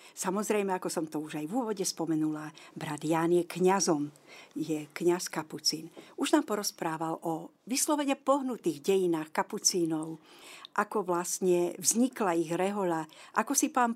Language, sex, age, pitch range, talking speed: Slovak, female, 50-69, 175-210 Hz, 140 wpm